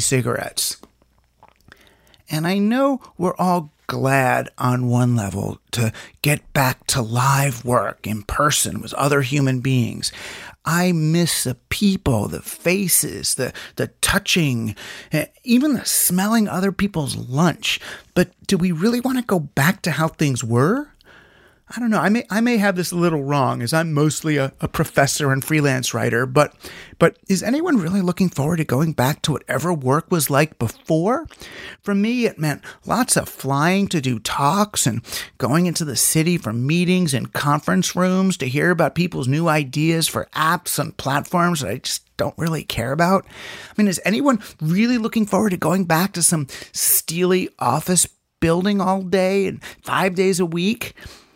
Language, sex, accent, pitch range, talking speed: English, male, American, 135-190 Hz, 170 wpm